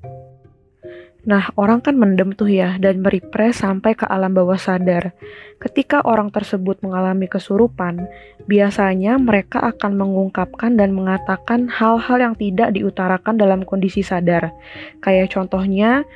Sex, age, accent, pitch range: female, 20-39, native, 190-215 Hz